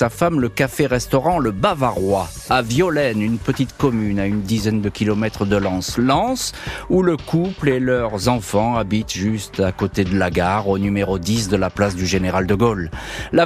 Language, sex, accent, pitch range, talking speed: French, male, French, 100-140 Hz, 190 wpm